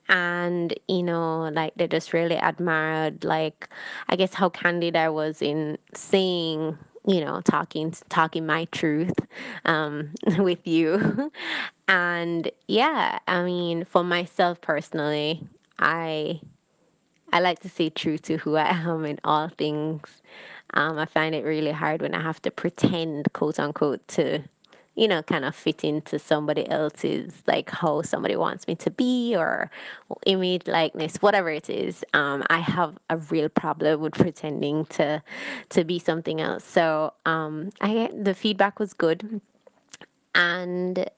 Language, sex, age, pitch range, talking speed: English, female, 20-39, 155-180 Hz, 150 wpm